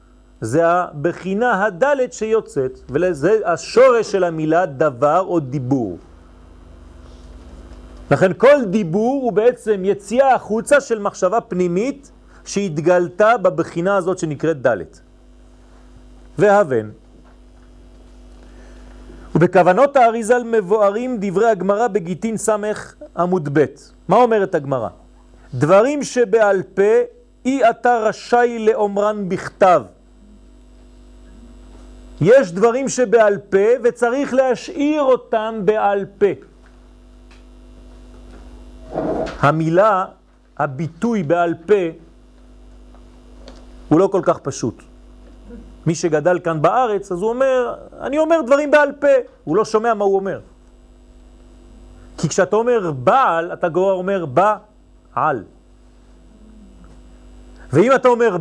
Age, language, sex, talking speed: 40-59, French, male, 95 wpm